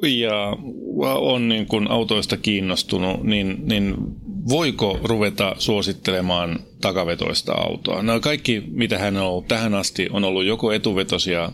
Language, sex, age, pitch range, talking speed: Finnish, male, 30-49, 90-115 Hz, 130 wpm